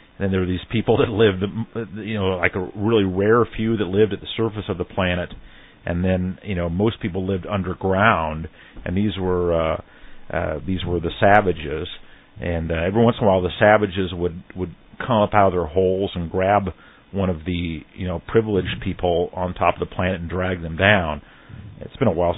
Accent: American